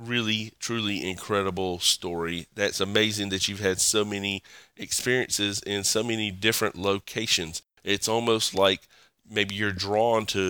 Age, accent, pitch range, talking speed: 30-49, American, 95-110 Hz, 135 wpm